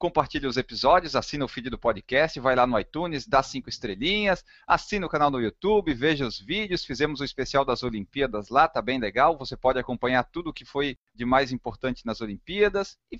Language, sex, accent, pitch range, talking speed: Portuguese, male, Brazilian, 130-185 Hz, 210 wpm